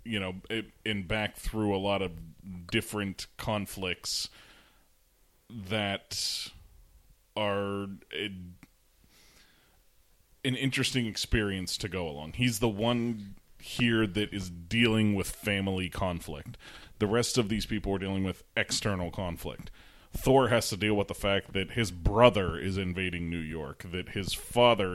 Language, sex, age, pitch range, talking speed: English, male, 30-49, 90-110 Hz, 130 wpm